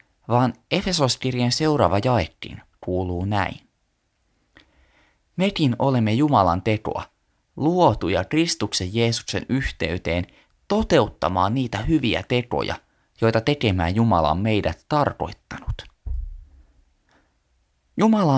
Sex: male